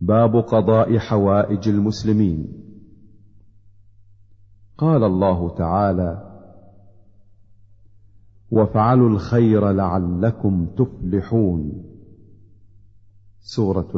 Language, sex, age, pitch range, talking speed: Arabic, male, 50-69, 95-105 Hz, 50 wpm